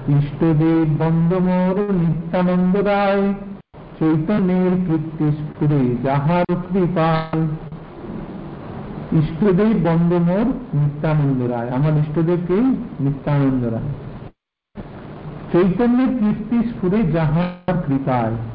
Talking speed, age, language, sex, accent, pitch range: 60 wpm, 50-69, Hindi, male, native, 150-190 Hz